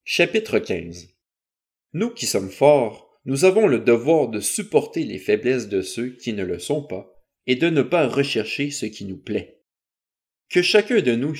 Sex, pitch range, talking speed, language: male, 105-150 Hz, 180 wpm, French